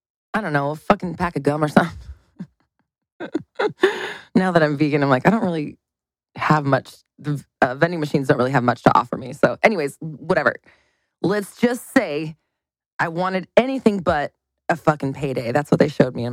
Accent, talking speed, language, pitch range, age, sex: American, 185 wpm, English, 150-205 Hz, 20-39, female